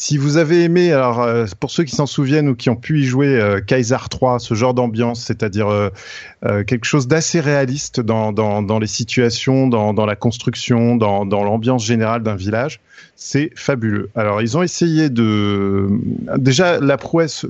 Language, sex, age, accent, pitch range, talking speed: French, male, 30-49, French, 115-145 Hz, 190 wpm